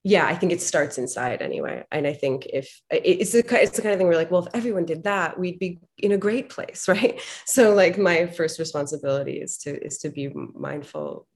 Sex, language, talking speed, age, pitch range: female, English, 225 wpm, 20-39, 135-165 Hz